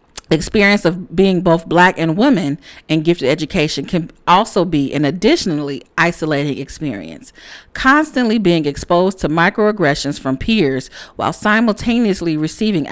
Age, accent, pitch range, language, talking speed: 40-59, American, 145-200 Hz, English, 130 wpm